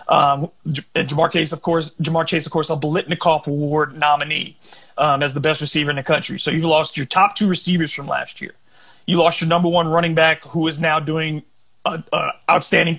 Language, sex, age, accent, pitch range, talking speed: English, male, 30-49, American, 160-185 Hz, 190 wpm